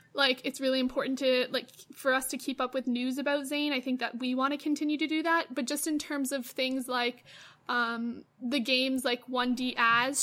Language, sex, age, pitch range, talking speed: English, female, 20-39, 245-285 Hz, 225 wpm